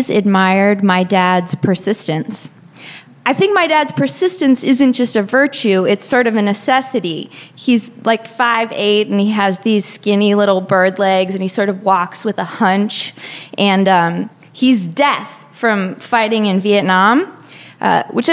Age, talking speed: 20-39, 155 wpm